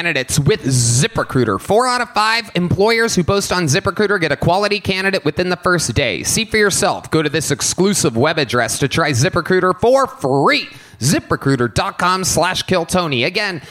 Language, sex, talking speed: English, male, 165 wpm